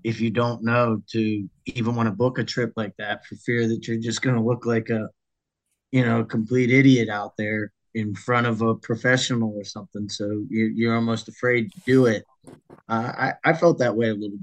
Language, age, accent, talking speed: English, 30-49, American, 215 wpm